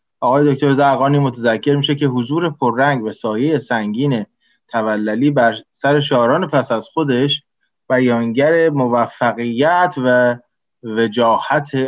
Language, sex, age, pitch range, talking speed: Persian, male, 20-39, 115-140 Hz, 110 wpm